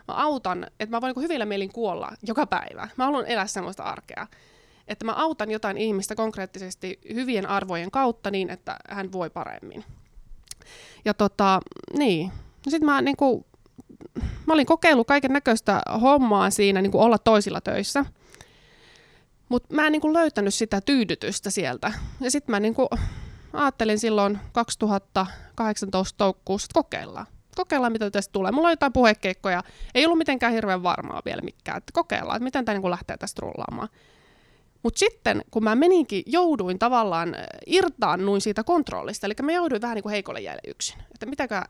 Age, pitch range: 20-39, 195-280 Hz